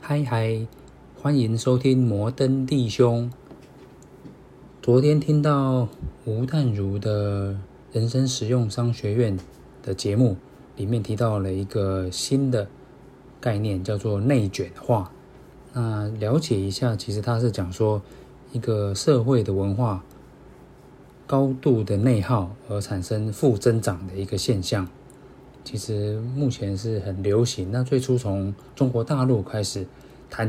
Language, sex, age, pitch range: Chinese, male, 20-39, 100-130 Hz